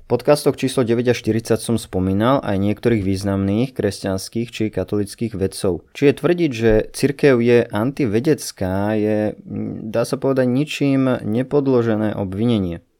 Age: 20-39